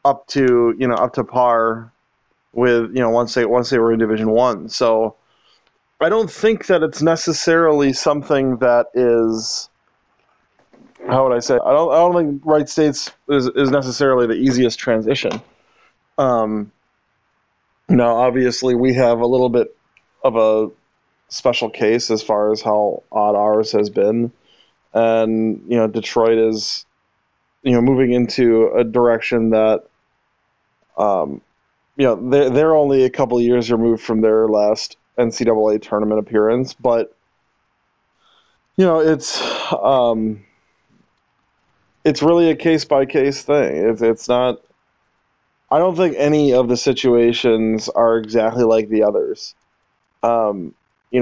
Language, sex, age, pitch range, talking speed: English, male, 20-39, 115-140 Hz, 140 wpm